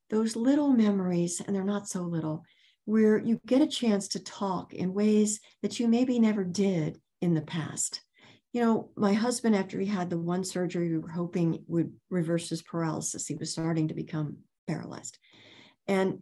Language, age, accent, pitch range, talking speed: English, 50-69, American, 180-245 Hz, 180 wpm